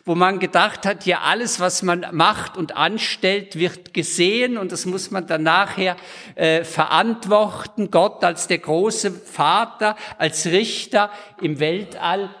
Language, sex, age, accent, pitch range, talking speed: German, male, 50-69, German, 165-210 Hz, 145 wpm